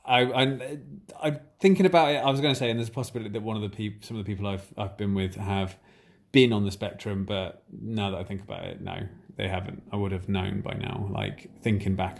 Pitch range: 100-115 Hz